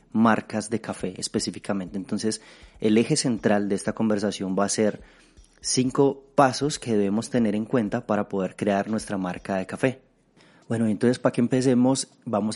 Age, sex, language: 30-49, male, Spanish